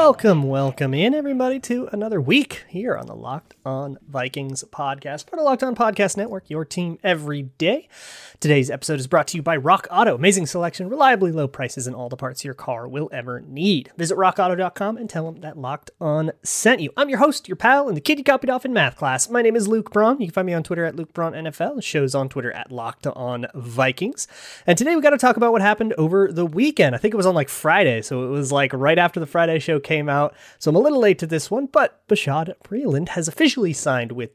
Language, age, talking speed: English, 30-49, 245 wpm